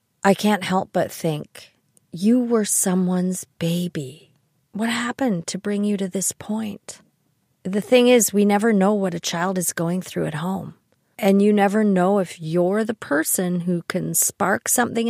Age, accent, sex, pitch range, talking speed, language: 40-59, American, female, 170-220 Hz, 170 wpm, English